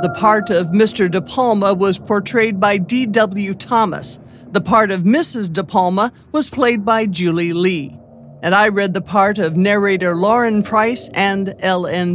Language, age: English, 50-69